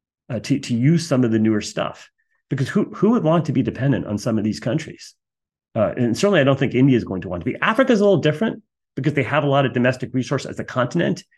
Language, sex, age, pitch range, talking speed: English, male, 40-59, 105-140 Hz, 265 wpm